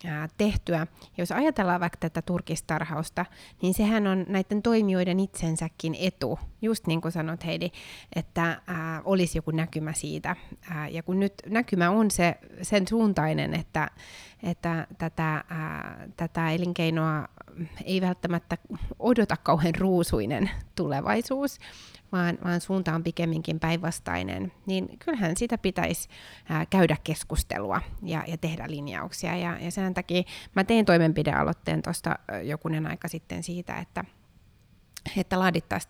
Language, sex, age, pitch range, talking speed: Finnish, female, 30-49, 160-195 Hz, 130 wpm